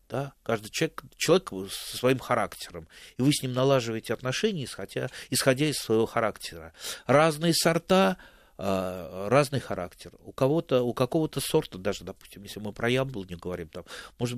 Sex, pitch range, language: male, 95-135 Hz, Russian